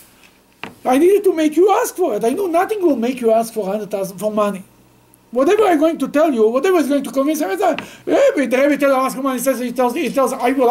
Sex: male